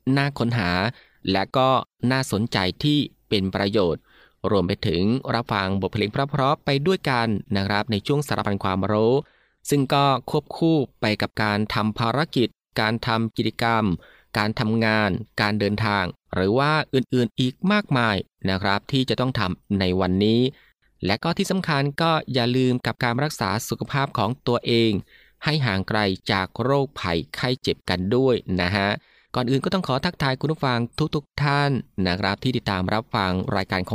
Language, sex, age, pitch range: Thai, male, 20-39, 100-130 Hz